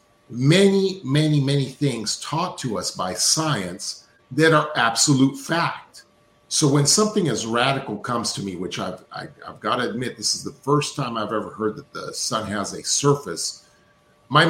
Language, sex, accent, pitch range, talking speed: English, male, American, 110-145 Hz, 175 wpm